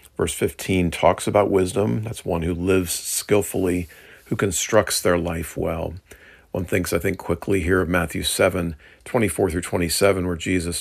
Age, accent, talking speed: 50-69, American, 160 wpm